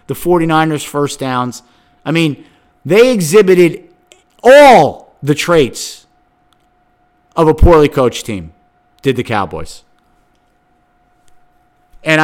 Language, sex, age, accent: English, male, 50-69, American